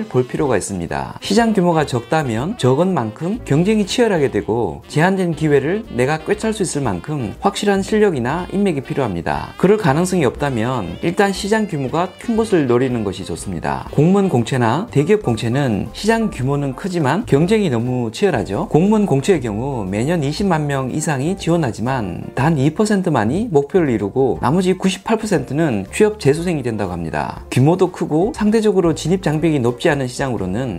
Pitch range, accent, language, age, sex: 125-185 Hz, native, Korean, 40-59, male